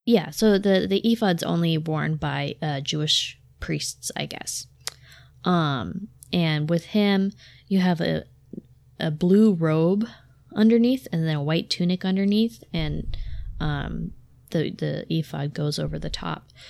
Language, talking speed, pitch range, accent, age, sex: English, 140 wpm, 155-195 Hz, American, 20-39, female